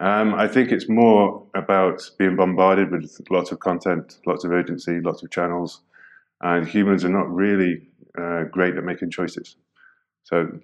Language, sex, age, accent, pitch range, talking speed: English, male, 20-39, British, 85-95 Hz, 165 wpm